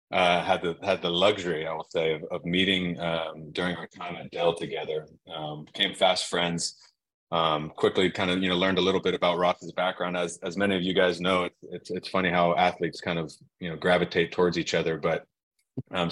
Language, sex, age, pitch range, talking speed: English, male, 30-49, 80-90 Hz, 220 wpm